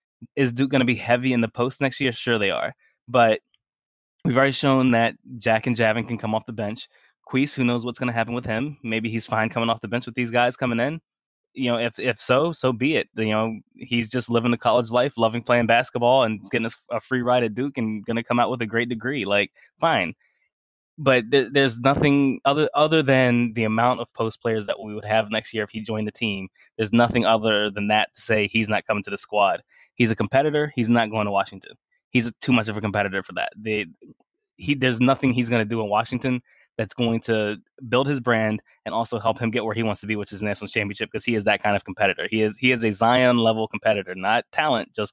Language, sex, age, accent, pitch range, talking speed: English, male, 20-39, American, 110-125 Hz, 245 wpm